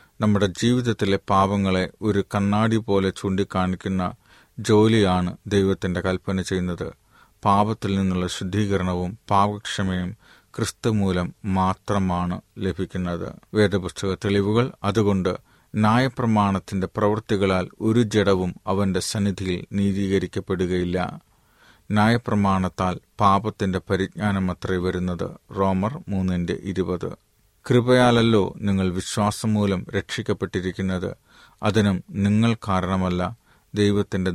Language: Malayalam